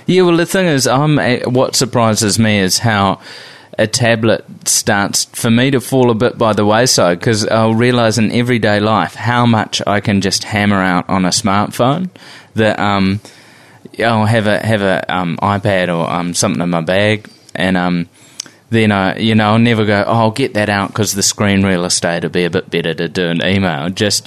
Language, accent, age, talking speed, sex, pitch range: English, Australian, 20-39, 205 wpm, male, 95-120 Hz